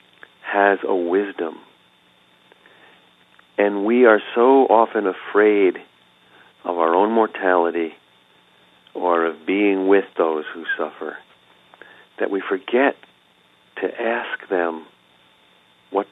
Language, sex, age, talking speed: English, male, 50-69, 100 wpm